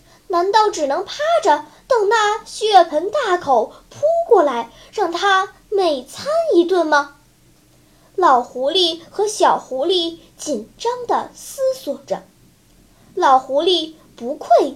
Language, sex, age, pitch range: Chinese, male, 10-29, 285-370 Hz